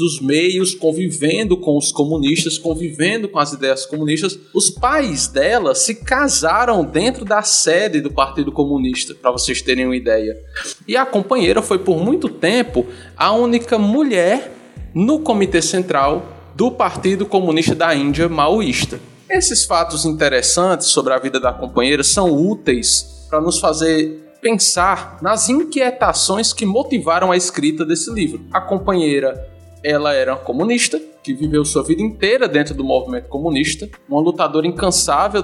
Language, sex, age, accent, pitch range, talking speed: Portuguese, male, 20-39, Brazilian, 145-210 Hz, 145 wpm